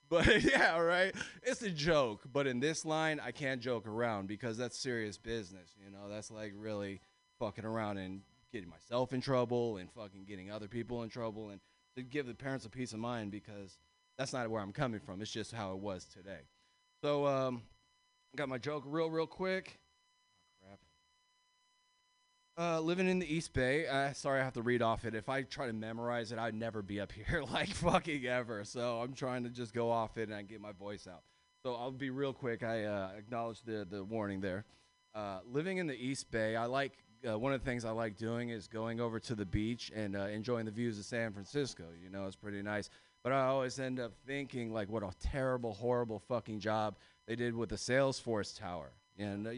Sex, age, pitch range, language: male, 20-39, 105-135 Hz, English